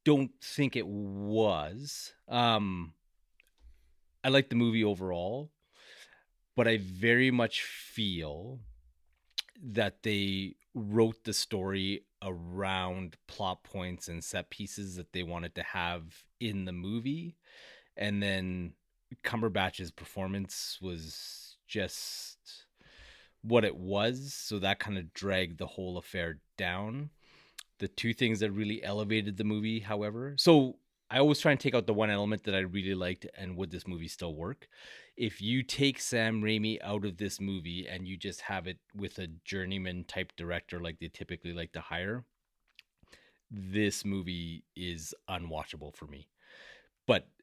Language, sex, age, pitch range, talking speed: English, male, 30-49, 90-110 Hz, 145 wpm